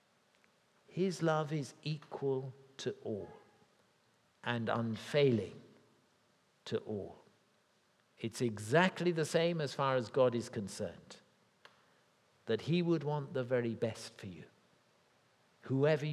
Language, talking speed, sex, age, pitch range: English, 110 wpm, male, 50-69, 120-160 Hz